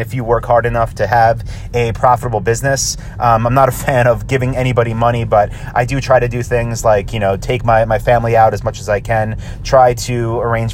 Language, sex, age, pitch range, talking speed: English, male, 30-49, 110-130 Hz, 235 wpm